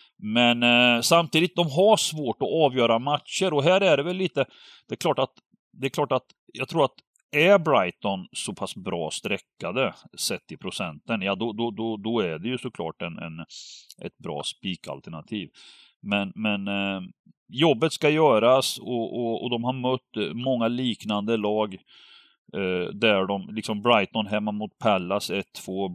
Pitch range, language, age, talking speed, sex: 100-130 Hz, Swedish, 40-59, 170 wpm, male